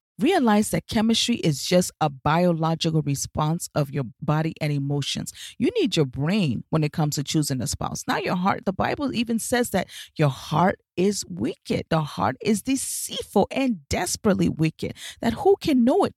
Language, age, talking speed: English, 40-59, 180 wpm